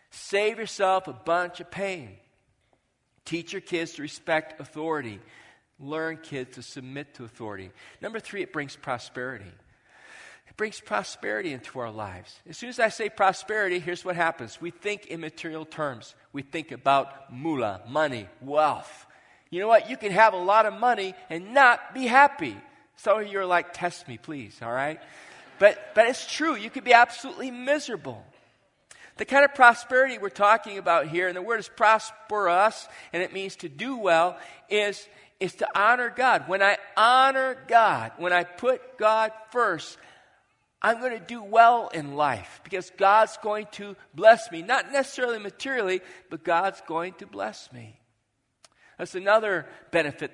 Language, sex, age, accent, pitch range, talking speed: English, male, 40-59, American, 150-220 Hz, 165 wpm